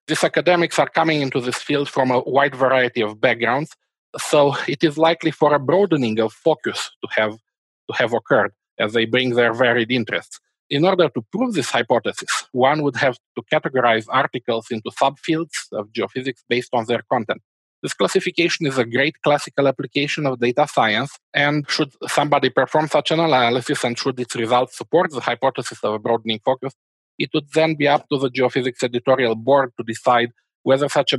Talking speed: 185 wpm